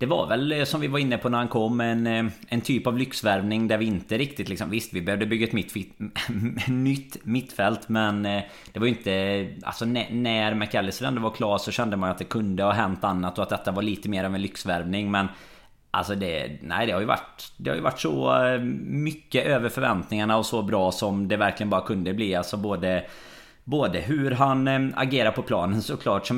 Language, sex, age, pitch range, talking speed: Swedish, male, 30-49, 95-115 Hz, 210 wpm